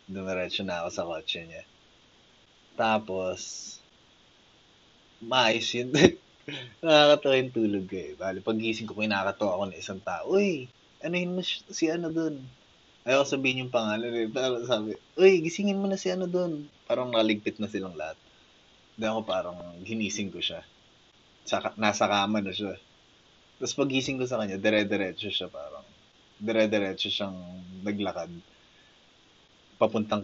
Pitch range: 95-120 Hz